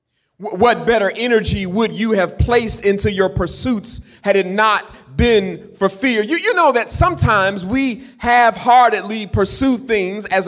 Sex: male